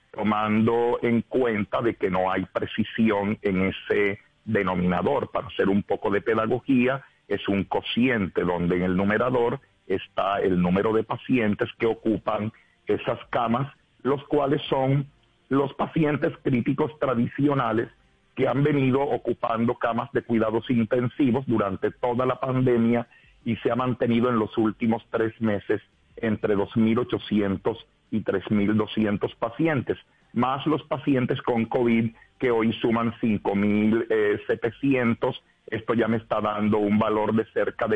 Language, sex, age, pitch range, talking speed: Spanish, male, 40-59, 105-130 Hz, 135 wpm